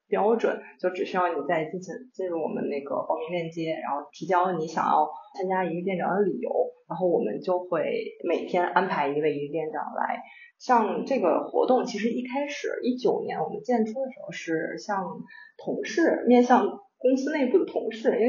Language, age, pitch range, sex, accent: Chinese, 20-39, 175-255 Hz, female, native